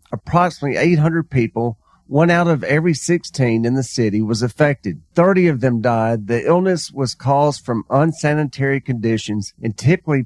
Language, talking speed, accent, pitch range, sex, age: English, 150 wpm, American, 115-160 Hz, male, 40-59